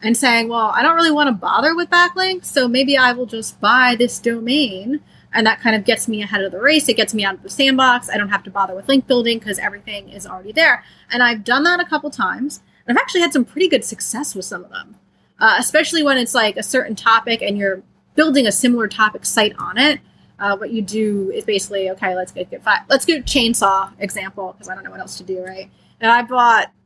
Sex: female